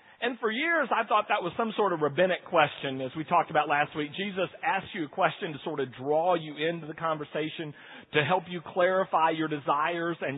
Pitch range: 155-220 Hz